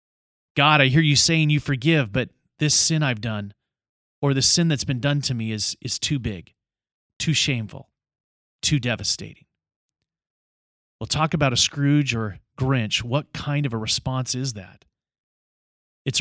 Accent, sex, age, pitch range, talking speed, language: American, male, 30-49, 115-150 Hz, 160 wpm, English